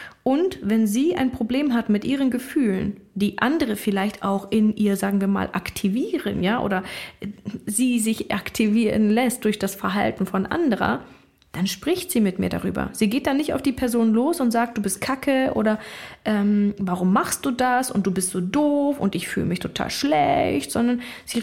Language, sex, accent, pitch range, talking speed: German, female, German, 200-250 Hz, 190 wpm